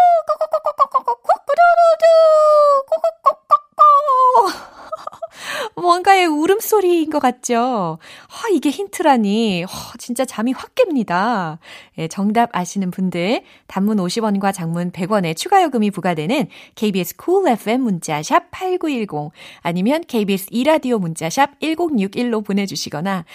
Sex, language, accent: female, Korean, native